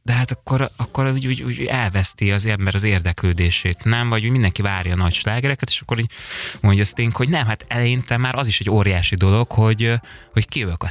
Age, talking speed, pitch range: 20-39, 205 wpm, 95-125 Hz